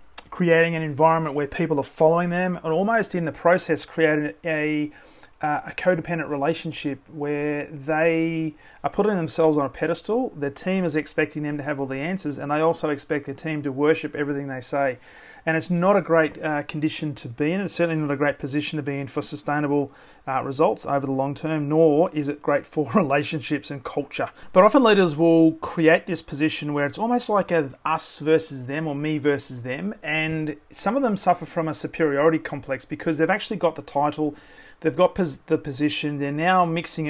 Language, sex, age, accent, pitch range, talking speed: English, male, 30-49, Australian, 145-165 Hz, 200 wpm